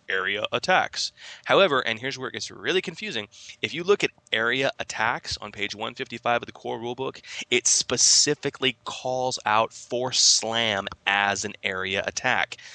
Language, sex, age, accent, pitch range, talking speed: English, male, 20-39, American, 100-130 Hz, 155 wpm